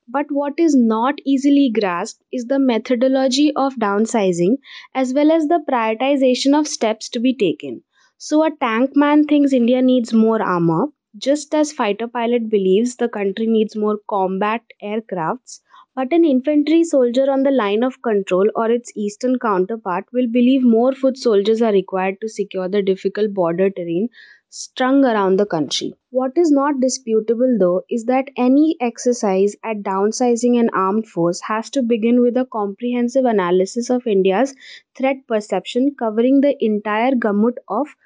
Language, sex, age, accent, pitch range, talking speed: English, female, 20-39, Indian, 215-265 Hz, 160 wpm